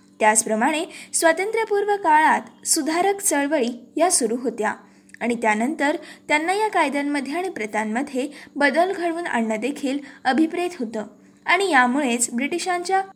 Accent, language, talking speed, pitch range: native, Marathi, 110 wpm, 235-340 Hz